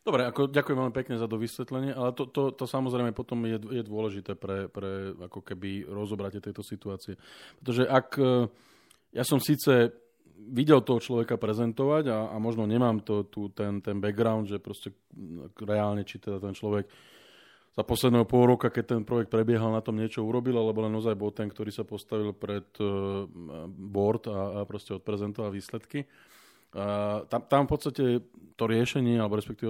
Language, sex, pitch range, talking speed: Slovak, male, 105-120 Hz, 165 wpm